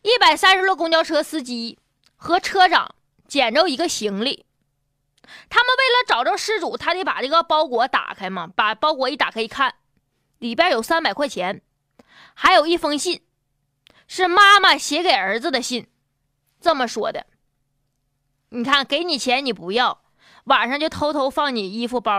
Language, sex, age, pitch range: Chinese, female, 20-39, 230-365 Hz